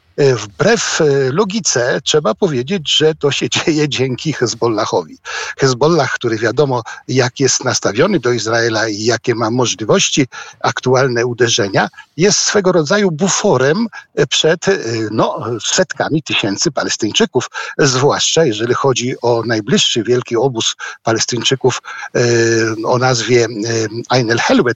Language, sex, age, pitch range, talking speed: Polish, male, 50-69, 125-155 Hz, 110 wpm